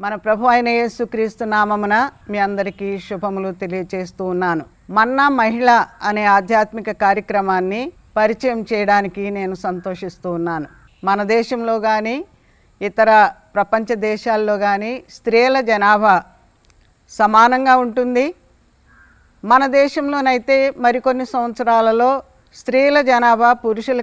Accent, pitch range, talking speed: native, 205-250 Hz, 90 wpm